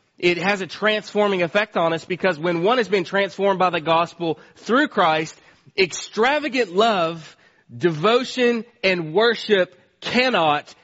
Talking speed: 135 wpm